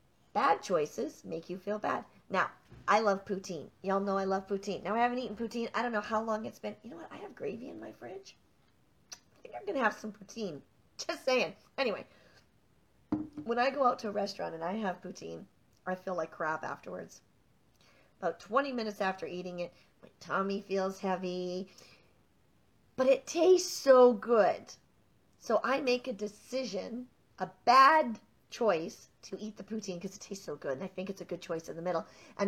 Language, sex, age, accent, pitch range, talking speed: English, female, 40-59, American, 180-225 Hz, 200 wpm